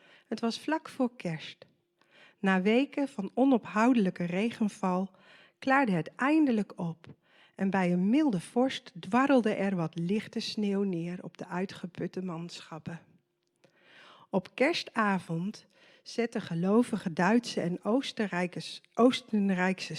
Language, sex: Dutch, female